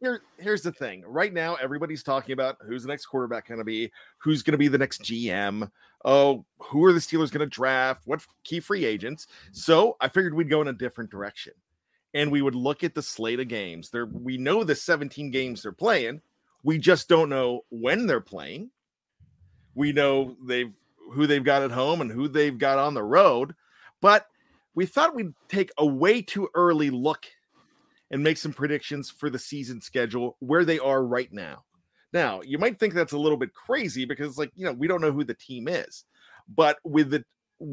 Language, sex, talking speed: English, male, 205 wpm